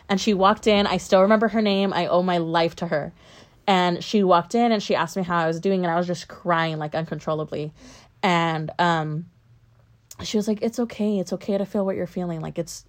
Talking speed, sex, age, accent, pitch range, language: 235 wpm, female, 20-39, American, 160-190 Hz, English